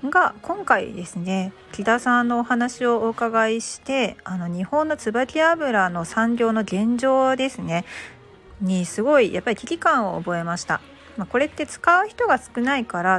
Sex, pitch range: female, 180-260 Hz